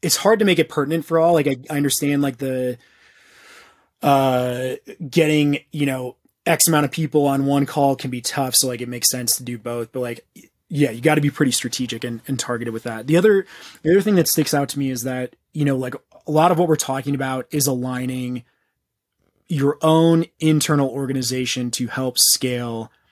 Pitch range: 125-155 Hz